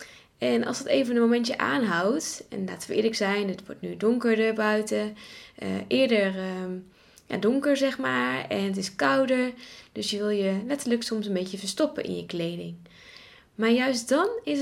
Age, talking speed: 20-39, 180 wpm